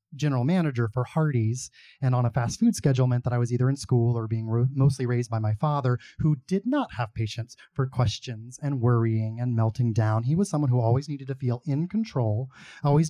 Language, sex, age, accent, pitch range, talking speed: English, male, 30-49, American, 120-150 Hz, 215 wpm